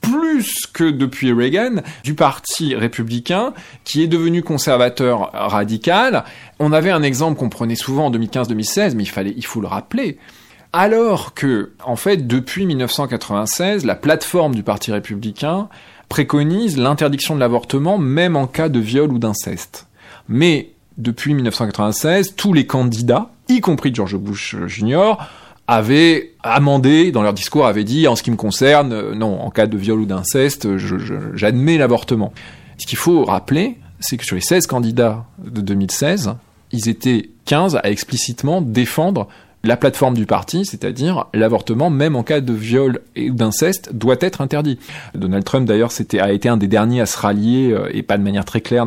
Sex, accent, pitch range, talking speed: male, French, 110-150 Hz, 170 wpm